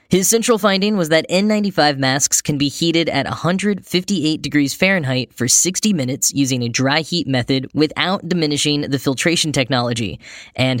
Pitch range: 135-170 Hz